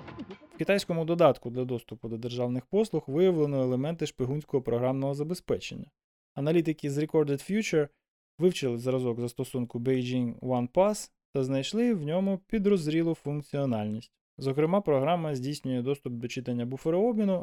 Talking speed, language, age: 125 wpm, Ukrainian, 20-39